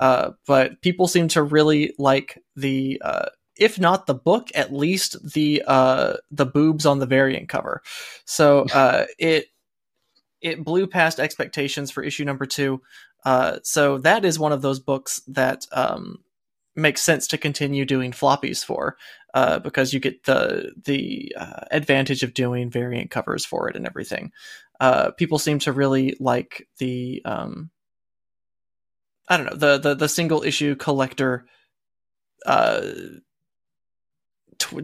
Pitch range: 130-155 Hz